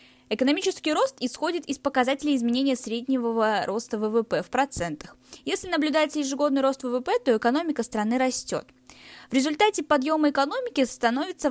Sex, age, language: female, 10-29, Russian